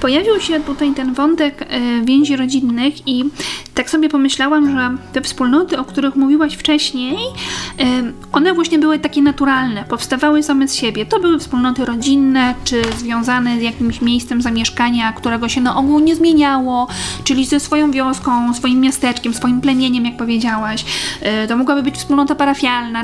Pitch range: 245-300 Hz